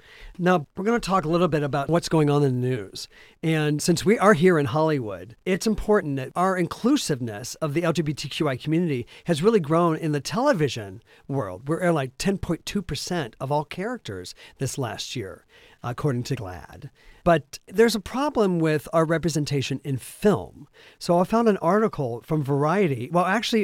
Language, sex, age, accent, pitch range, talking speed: English, male, 50-69, American, 130-175 Hz, 175 wpm